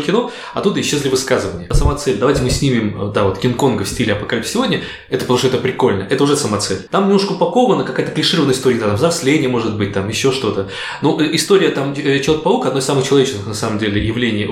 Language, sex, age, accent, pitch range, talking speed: Russian, male, 20-39, native, 115-160 Hz, 210 wpm